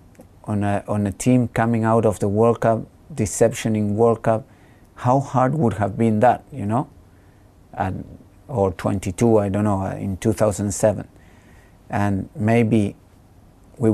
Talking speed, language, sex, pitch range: 150 wpm, English, male, 100-115 Hz